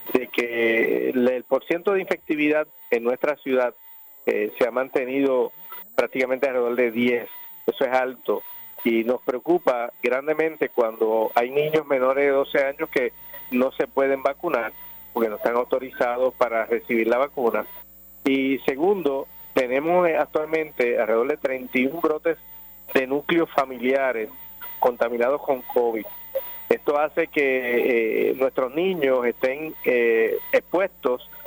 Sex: male